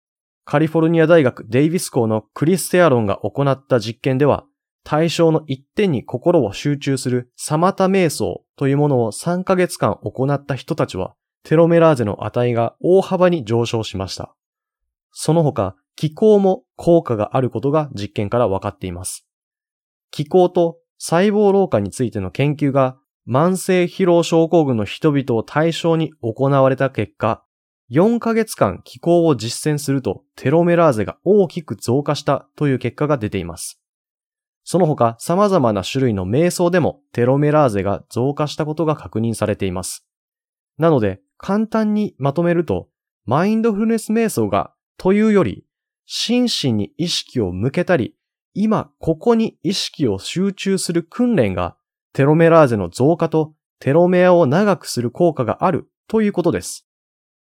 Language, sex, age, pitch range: Japanese, male, 20-39, 120-180 Hz